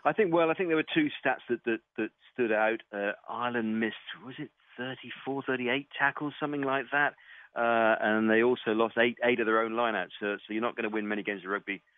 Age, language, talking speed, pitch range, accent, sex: 40-59, English, 245 wpm, 95-110 Hz, British, male